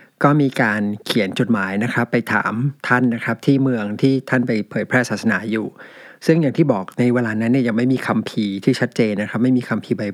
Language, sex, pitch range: Thai, male, 110-135 Hz